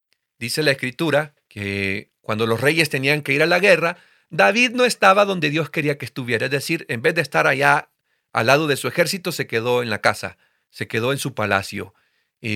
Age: 40-59